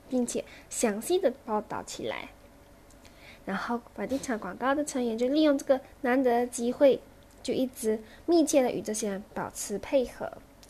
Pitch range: 220-275 Hz